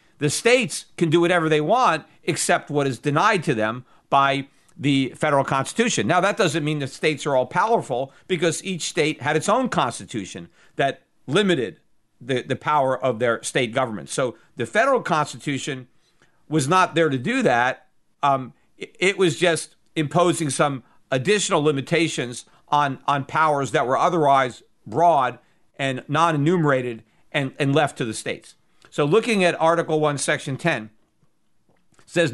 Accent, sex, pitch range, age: American, male, 140-170 Hz, 50-69